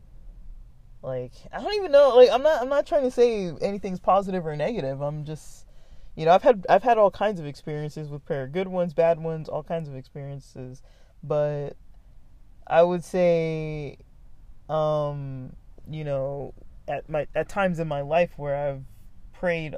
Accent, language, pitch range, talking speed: American, English, 135-165 Hz, 170 wpm